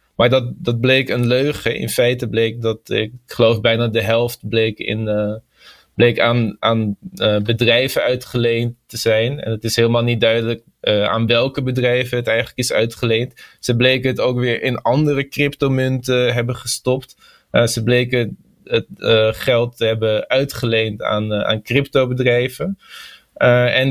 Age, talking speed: 20-39, 165 wpm